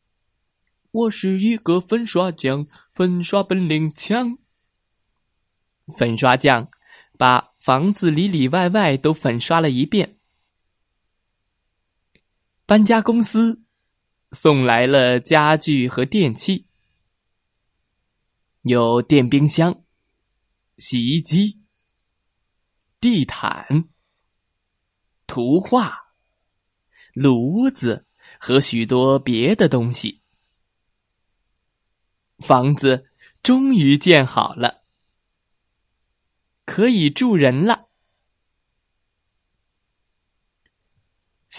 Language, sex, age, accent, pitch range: Chinese, male, 20-39, native, 120-185 Hz